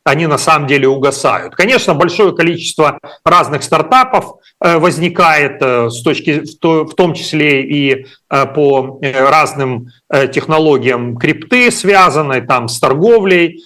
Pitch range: 135-170 Hz